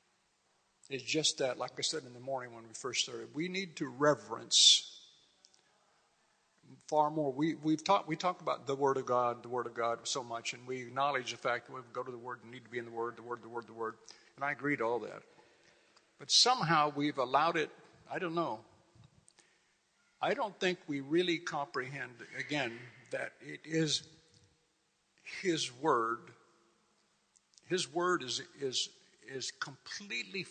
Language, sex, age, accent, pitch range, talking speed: English, male, 60-79, American, 130-175 Hz, 180 wpm